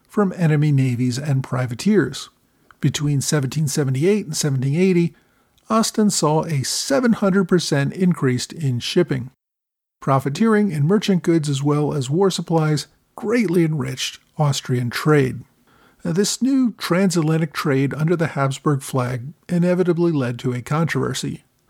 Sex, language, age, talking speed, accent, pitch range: male, English, 50-69, 115 wpm, American, 135-180 Hz